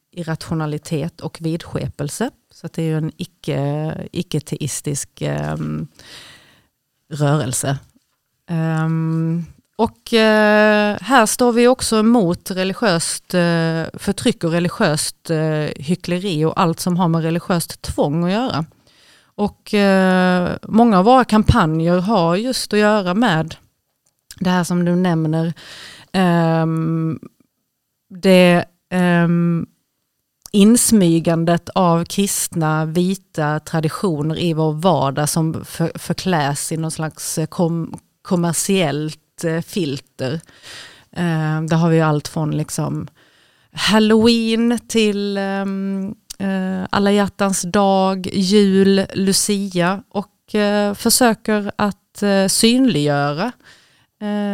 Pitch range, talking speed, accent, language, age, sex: 160-200 Hz, 95 wpm, native, Swedish, 30-49, female